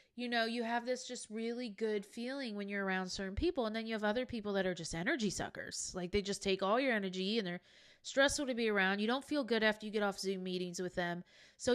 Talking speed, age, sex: 260 wpm, 20-39, female